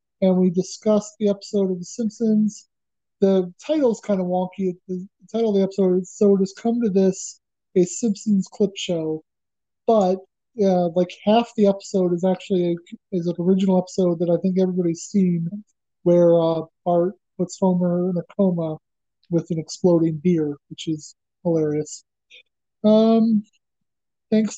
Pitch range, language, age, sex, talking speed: 180-215 Hz, English, 30-49, male, 150 wpm